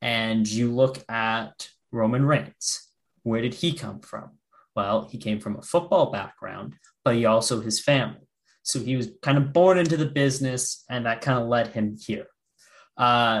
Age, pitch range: 20-39, 120-155 Hz